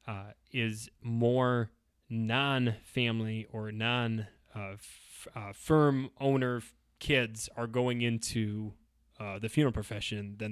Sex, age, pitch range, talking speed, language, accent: male, 20-39, 105-120 Hz, 120 wpm, English, American